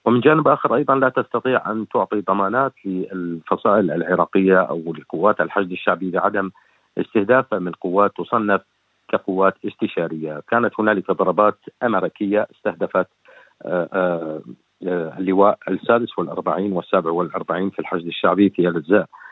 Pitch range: 90-105 Hz